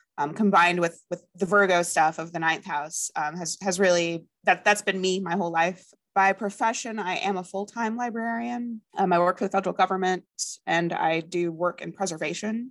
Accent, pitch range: American, 160-190 Hz